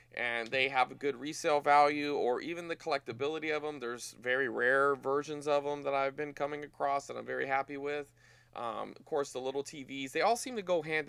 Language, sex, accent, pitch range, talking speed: English, male, American, 120-150 Hz, 220 wpm